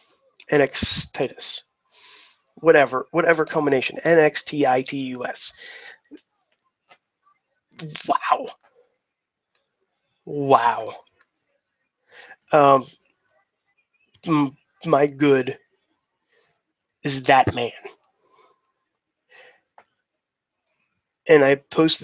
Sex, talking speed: male, 60 wpm